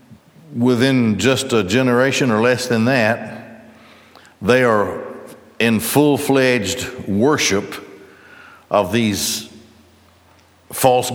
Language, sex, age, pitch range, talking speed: English, male, 60-79, 110-140 Hz, 85 wpm